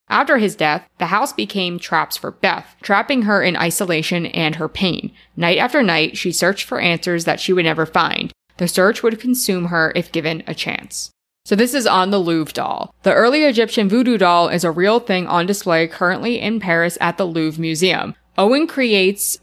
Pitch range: 170-210 Hz